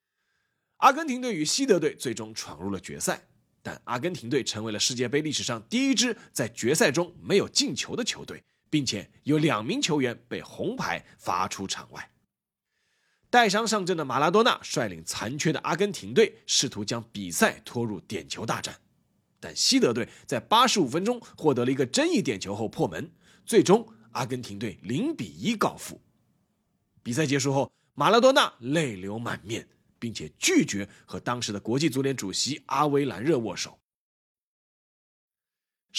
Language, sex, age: Chinese, male, 30-49